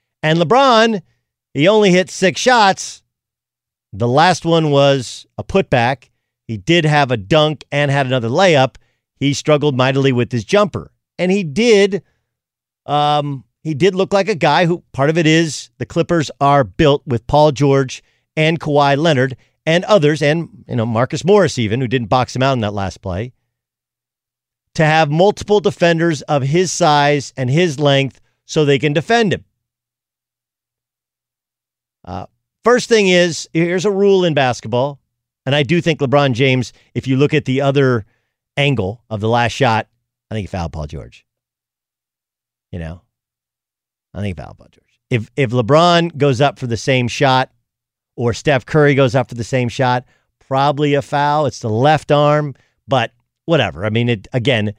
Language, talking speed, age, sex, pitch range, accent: English, 170 wpm, 50-69, male, 120-155 Hz, American